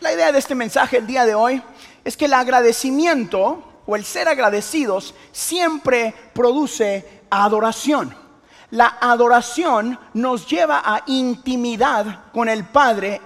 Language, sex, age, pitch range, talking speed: Spanish, male, 30-49, 195-250 Hz, 130 wpm